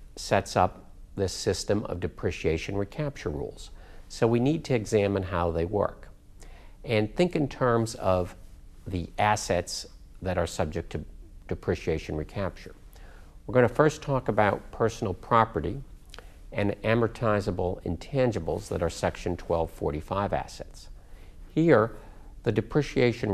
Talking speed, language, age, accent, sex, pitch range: 120 wpm, English, 50-69, American, male, 85-115 Hz